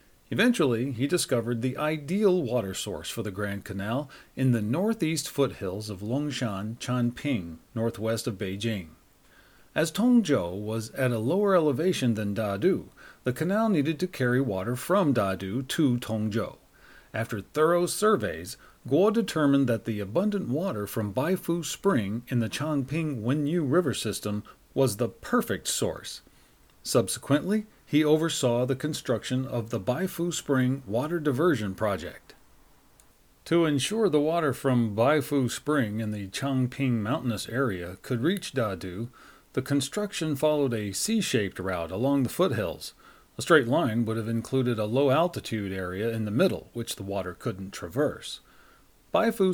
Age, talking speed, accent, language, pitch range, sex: 40-59, 140 wpm, American, English, 110-150 Hz, male